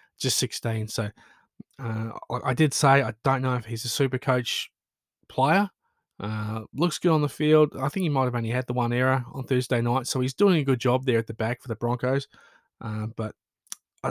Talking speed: 215 wpm